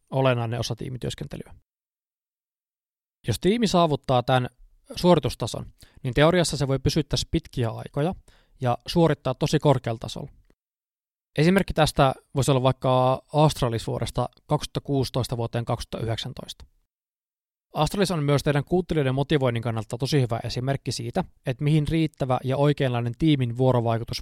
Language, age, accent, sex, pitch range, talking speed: Finnish, 20-39, native, male, 120-150 Hz, 115 wpm